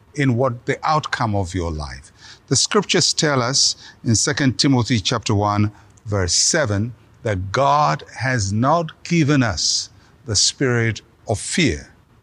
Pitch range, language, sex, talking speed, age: 110-140 Hz, English, male, 135 wpm, 60-79